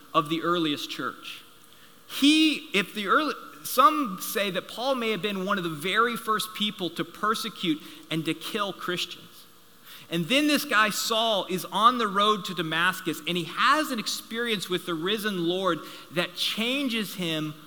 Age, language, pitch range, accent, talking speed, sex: 30-49, English, 160-215 Hz, American, 170 wpm, male